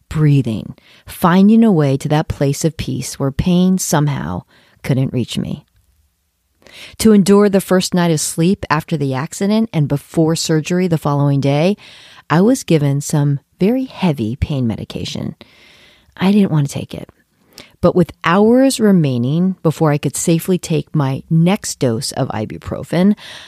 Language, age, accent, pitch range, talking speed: English, 40-59, American, 135-185 Hz, 150 wpm